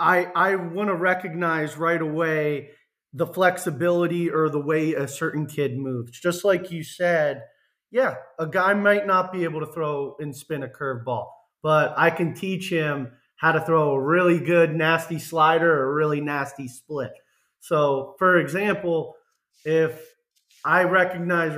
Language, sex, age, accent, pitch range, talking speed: English, male, 30-49, American, 160-200 Hz, 155 wpm